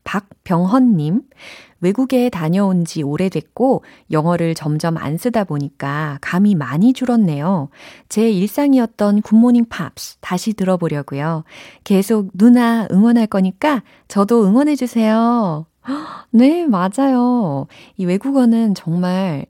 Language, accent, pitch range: Korean, native, 155-235 Hz